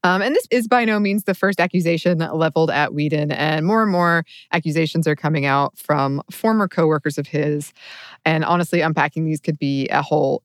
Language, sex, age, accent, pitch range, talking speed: English, female, 20-39, American, 155-185 Hz, 195 wpm